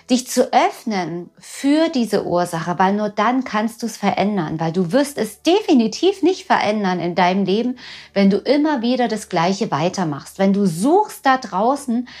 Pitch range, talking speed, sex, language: 190-240 Hz, 170 wpm, female, German